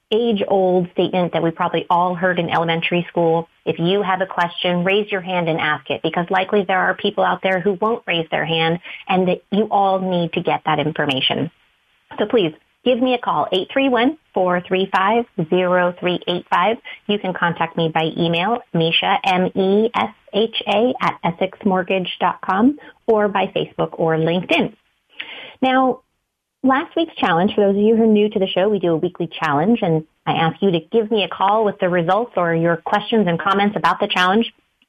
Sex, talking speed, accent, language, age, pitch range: female, 175 wpm, American, English, 30-49, 170-205 Hz